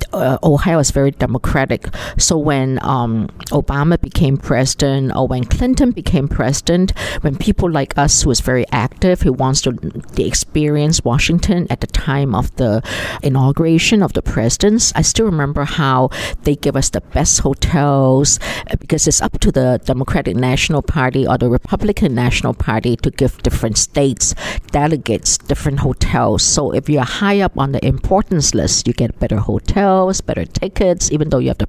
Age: 50-69